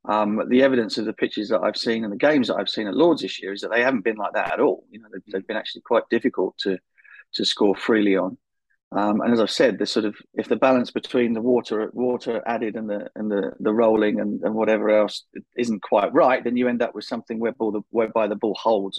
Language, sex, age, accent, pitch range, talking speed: English, male, 40-59, British, 105-120 Hz, 255 wpm